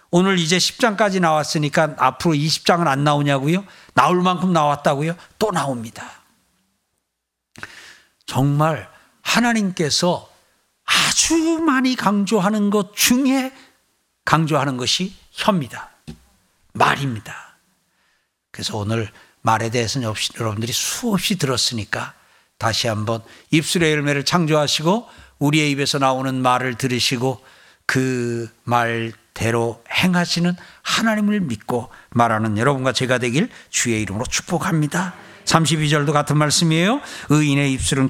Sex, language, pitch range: male, Korean, 125-195 Hz